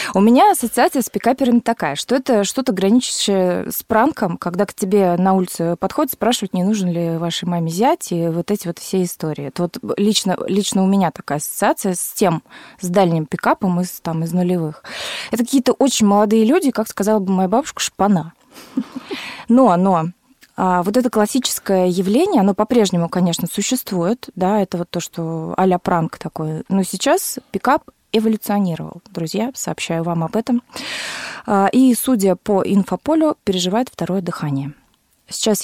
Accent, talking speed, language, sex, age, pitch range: native, 160 wpm, Russian, female, 20-39, 180-230 Hz